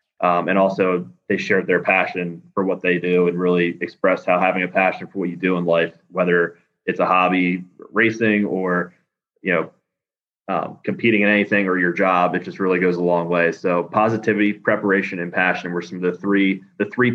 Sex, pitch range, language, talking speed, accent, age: male, 90-100 Hz, English, 205 wpm, American, 20-39